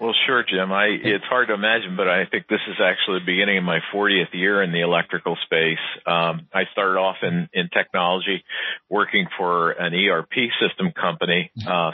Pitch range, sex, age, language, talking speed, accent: 80-90 Hz, male, 50-69, English, 190 wpm, American